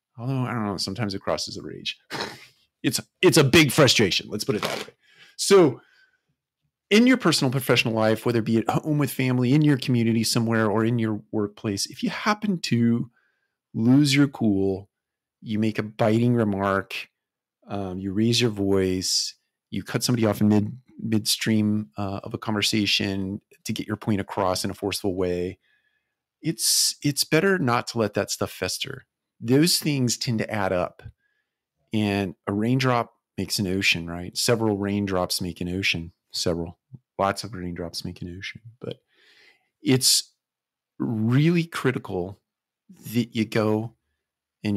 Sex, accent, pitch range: male, American, 95-120 Hz